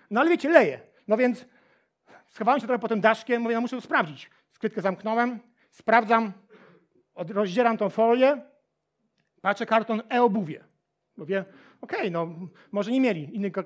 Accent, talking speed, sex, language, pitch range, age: native, 150 wpm, male, Polish, 215-270 Hz, 40-59